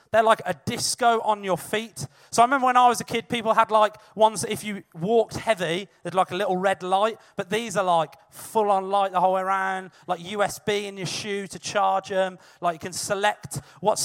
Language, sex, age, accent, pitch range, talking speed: English, male, 30-49, British, 170-225 Hz, 230 wpm